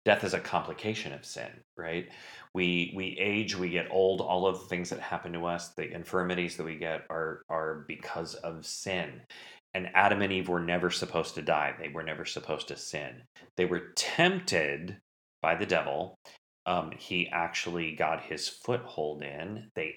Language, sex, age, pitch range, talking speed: English, male, 30-49, 80-95 Hz, 180 wpm